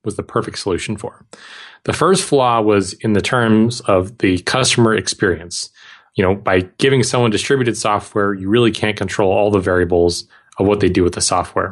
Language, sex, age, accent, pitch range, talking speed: English, male, 30-49, American, 95-115 Hz, 190 wpm